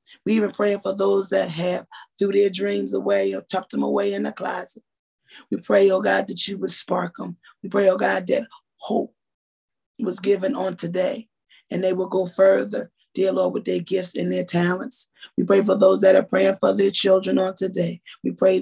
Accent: American